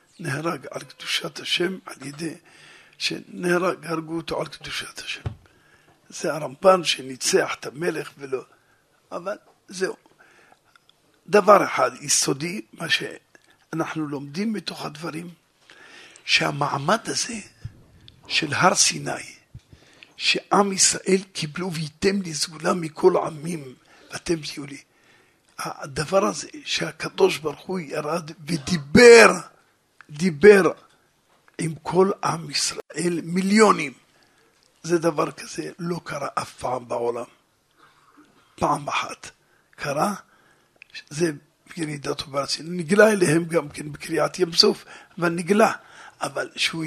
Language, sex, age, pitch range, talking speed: Hebrew, male, 50-69, 155-195 Hz, 100 wpm